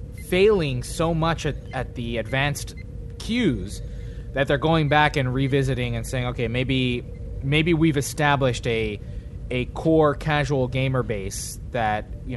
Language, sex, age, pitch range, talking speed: English, male, 20-39, 120-150 Hz, 140 wpm